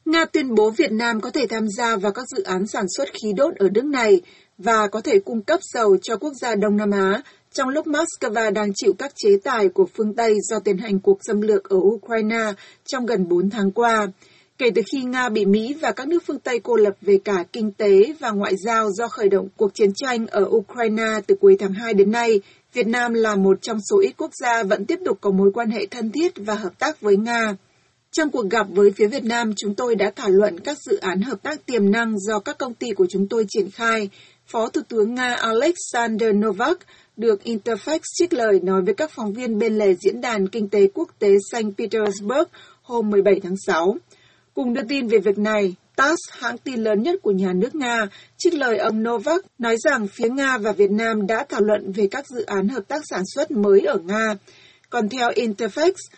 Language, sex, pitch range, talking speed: Vietnamese, female, 205-255 Hz, 225 wpm